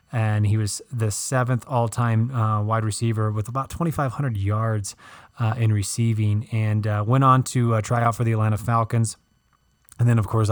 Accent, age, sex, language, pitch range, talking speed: American, 20-39, male, English, 110-125 Hz, 185 wpm